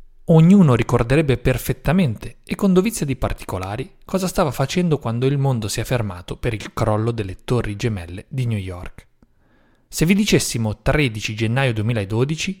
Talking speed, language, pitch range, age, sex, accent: 150 wpm, Italian, 110-155 Hz, 30-49, male, native